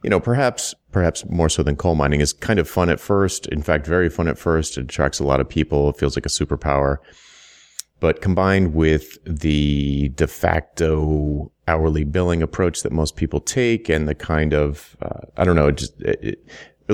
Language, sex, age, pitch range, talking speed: English, male, 30-49, 75-90 Hz, 205 wpm